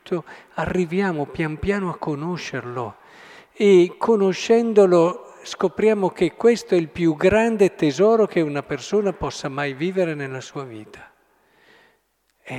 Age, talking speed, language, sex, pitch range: 50-69, 120 wpm, Italian, male, 130-190 Hz